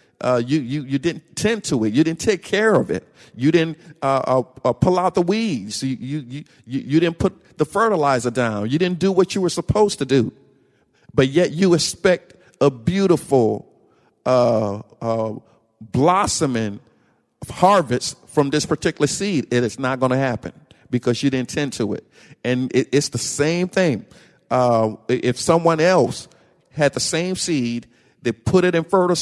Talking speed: 175 wpm